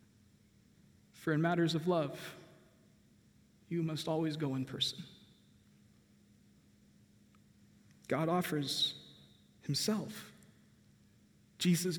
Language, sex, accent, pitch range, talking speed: English, male, American, 140-175 Hz, 75 wpm